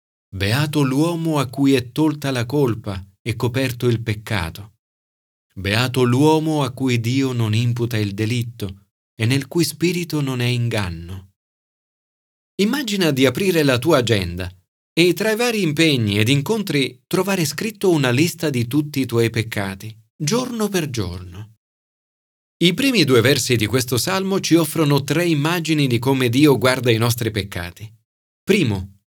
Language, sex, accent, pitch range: Italian, male, native, 110-160 Hz